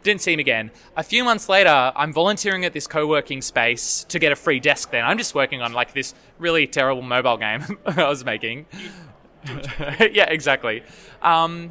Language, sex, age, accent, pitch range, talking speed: English, male, 20-39, Australian, 130-170 Hz, 185 wpm